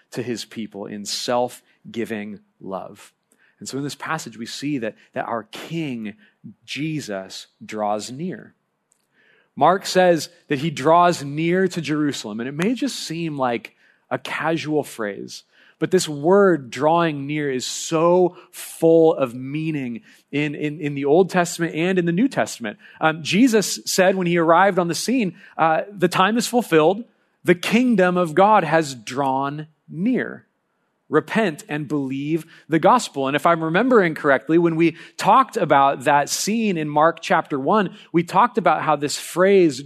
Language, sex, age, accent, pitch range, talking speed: English, male, 30-49, American, 135-180 Hz, 160 wpm